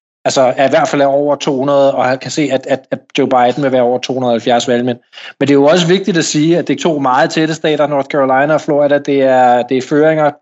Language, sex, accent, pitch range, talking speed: English, male, Danish, 130-150 Hz, 255 wpm